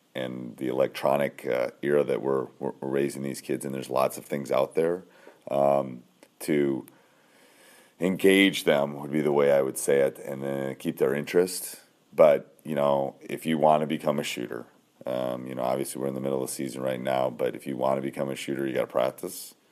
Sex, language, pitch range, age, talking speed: male, English, 65-75 Hz, 40-59, 215 wpm